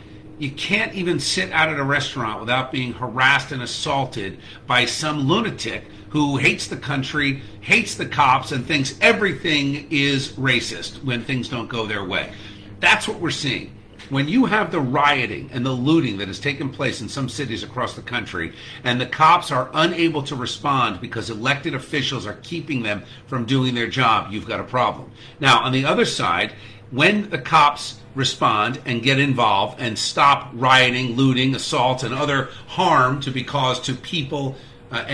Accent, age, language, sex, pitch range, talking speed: American, 50-69, English, male, 120-140 Hz, 175 wpm